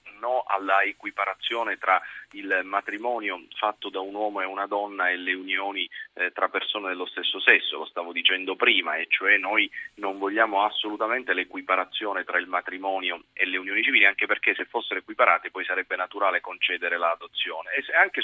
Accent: native